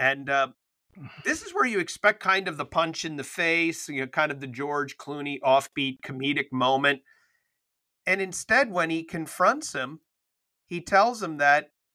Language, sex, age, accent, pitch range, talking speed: English, male, 40-59, American, 130-160 Hz, 160 wpm